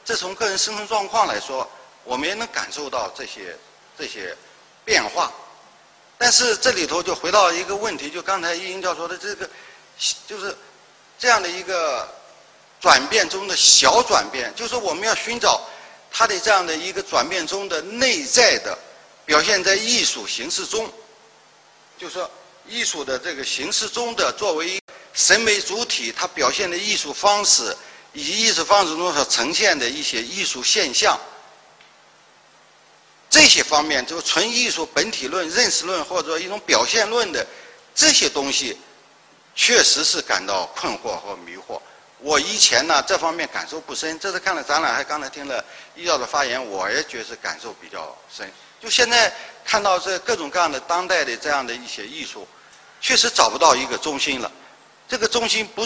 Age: 50-69